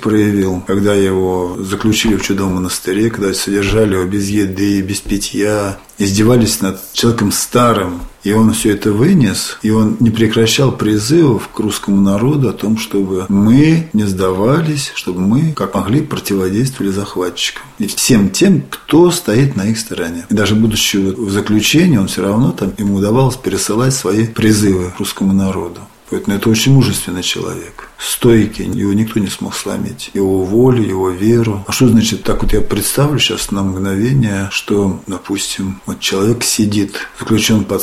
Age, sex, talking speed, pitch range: 40-59, male, 160 wpm, 100-115 Hz